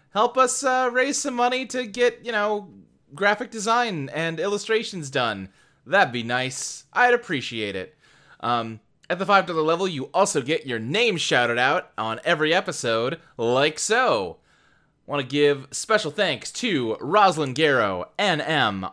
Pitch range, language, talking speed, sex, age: 135-205 Hz, English, 150 wpm, male, 20-39